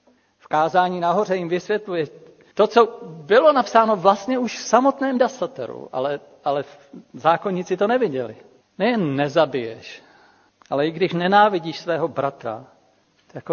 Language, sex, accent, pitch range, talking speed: Czech, male, native, 140-190 Hz, 125 wpm